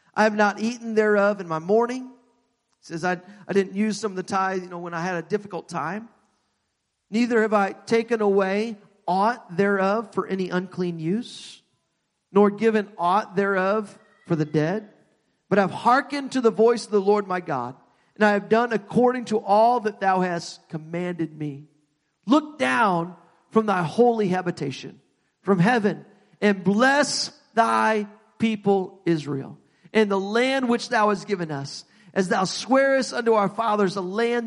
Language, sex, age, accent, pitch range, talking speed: English, male, 50-69, American, 185-240 Hz, 165 wpm